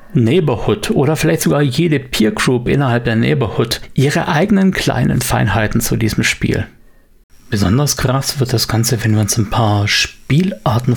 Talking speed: 155 wpm